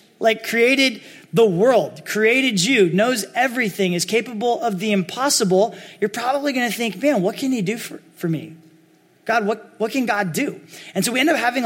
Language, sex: English, male